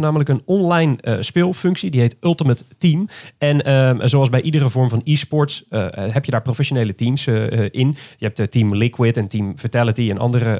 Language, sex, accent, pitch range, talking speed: Dutch, male, Dutch, 120-160 Hz, 195 wpm